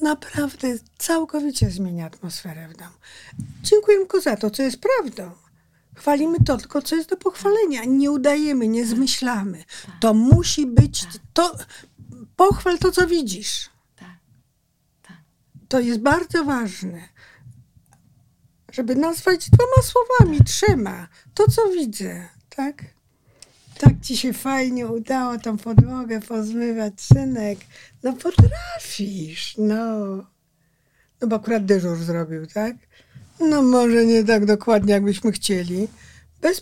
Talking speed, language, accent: 115 wpm, Polish, native